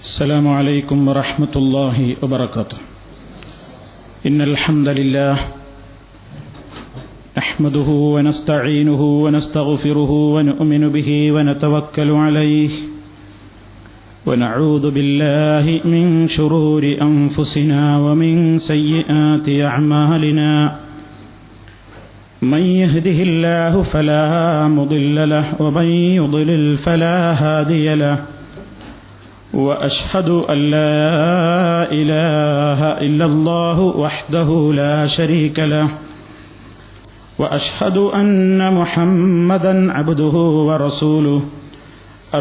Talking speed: 70 wpm